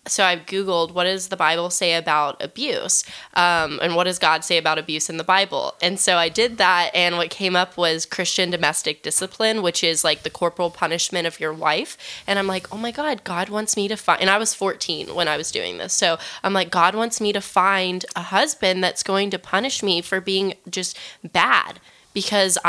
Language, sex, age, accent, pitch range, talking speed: English, female, 10-29, American, 165-190 Hz, 220 wpm